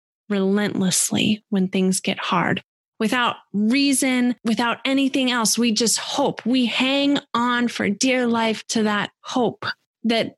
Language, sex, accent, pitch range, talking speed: English, female, American, 205-240 Hz, 135 wpm